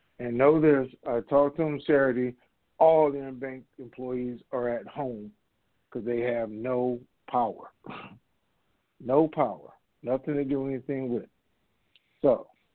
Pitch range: 125-150 Hz